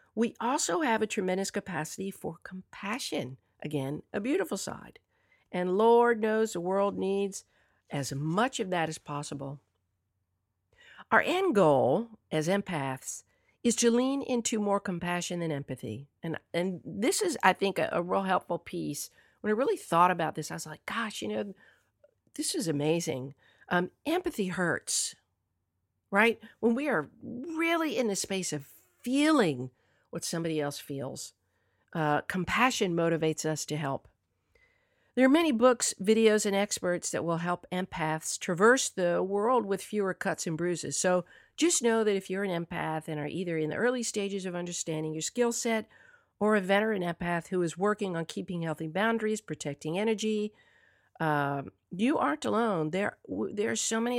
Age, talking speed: 50-69, 165 wpm